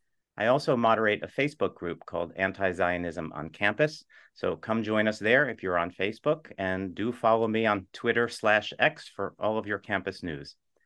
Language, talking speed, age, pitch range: English, 190 wpm, 40-59, 95-115 Hz